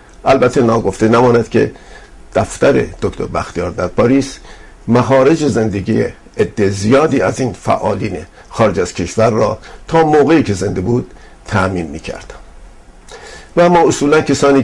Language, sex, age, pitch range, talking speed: Persian, male, 50-69, 100-130 Hz, 135 wpm